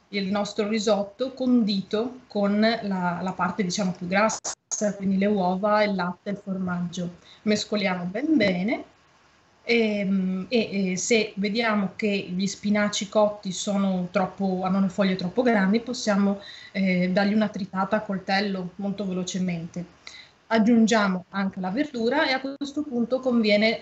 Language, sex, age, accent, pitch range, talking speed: Italian, female, 20-39, native, 190-225 Hz, 140 wpm